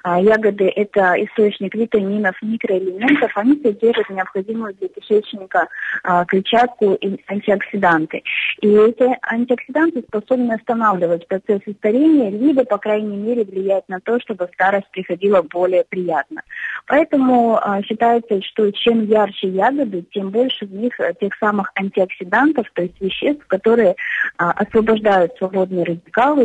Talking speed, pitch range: 120 wpm, 185-235 Hz